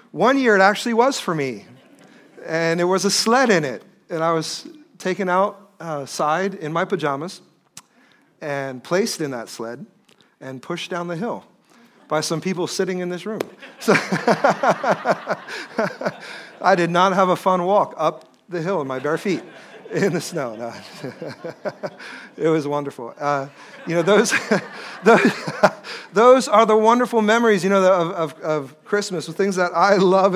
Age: 40-59